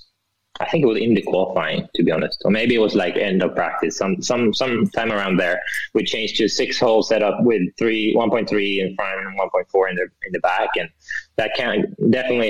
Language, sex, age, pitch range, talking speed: English, male, 20-39, 95-110 Hz, 250 wpm